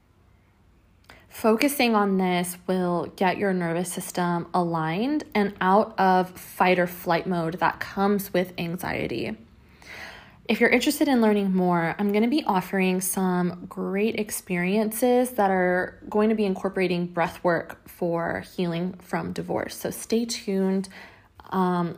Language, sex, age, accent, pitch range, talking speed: English, female, 20-39, American, 180-220 Hz, 135 wpm